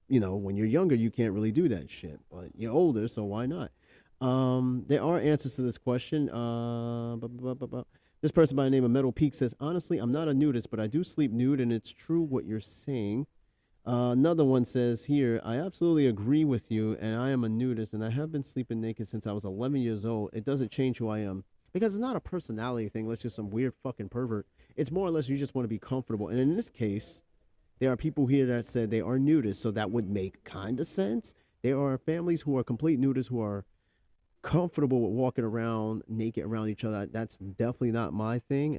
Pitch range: 110-140 Hz